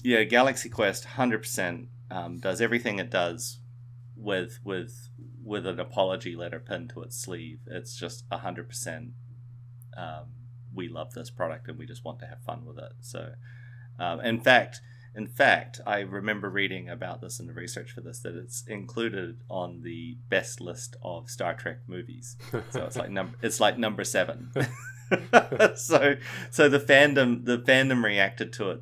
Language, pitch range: English, 100-120 Hz